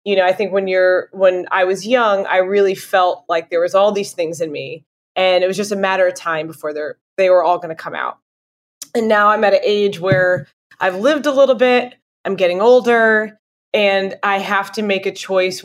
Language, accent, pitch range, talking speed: English, American, 185-220 Hz, 230 wpm